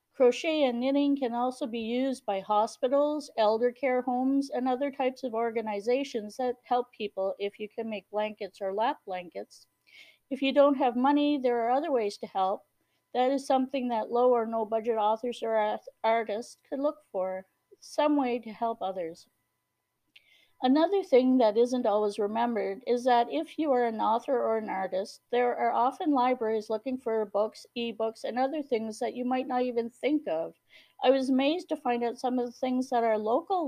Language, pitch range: English, 215-270 Hz